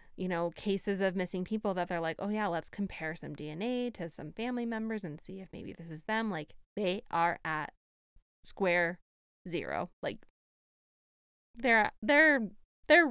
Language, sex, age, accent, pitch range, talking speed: English, female, 20-39, American, 185-245 Hz, 165 wpm